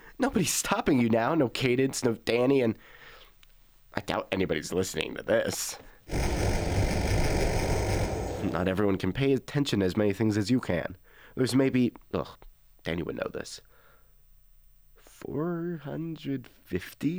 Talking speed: 120 wpm